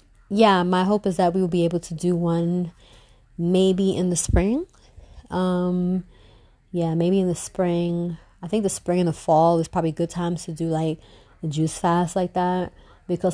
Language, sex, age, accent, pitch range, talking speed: English, female, 30-49, American, 165-195 Hz, 195 wpm